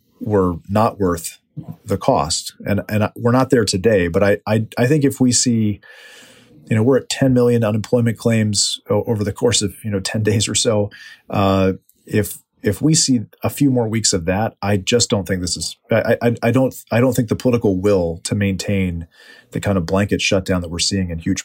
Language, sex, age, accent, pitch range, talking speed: English, male, 40-59, American, 95-120 Hz, 215 wpm